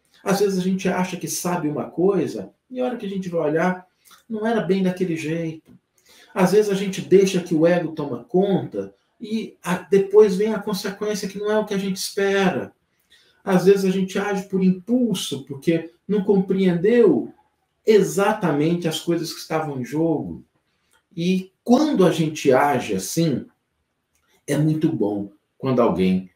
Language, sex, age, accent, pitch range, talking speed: Portuguese, male, 50-69, Brazilian, 140-200 Hz, 165 wpm